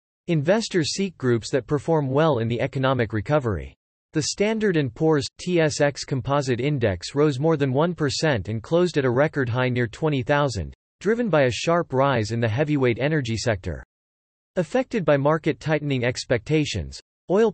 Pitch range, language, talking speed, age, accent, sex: 120-160 Hz, English, 150 wpm, 40-59, American, male